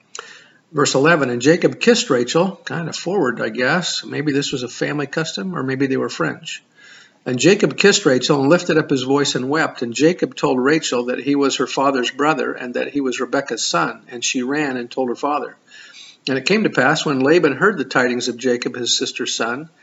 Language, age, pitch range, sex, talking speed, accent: English, 50-69, 130-160 Hz, male, 215 wpm, American